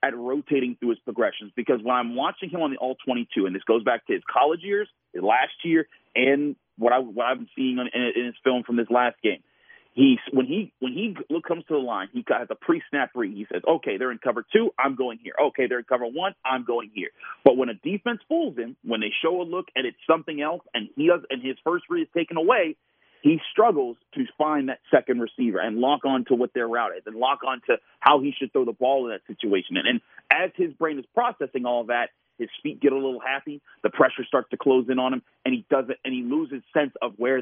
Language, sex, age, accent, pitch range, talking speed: English, male, 40-59, American, 125-185 Hz, 250 wpm